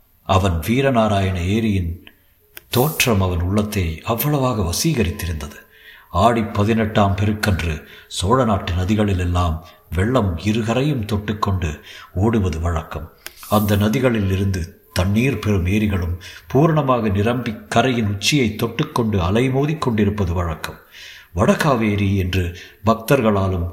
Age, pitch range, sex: 60-79, 95-120 Hz, male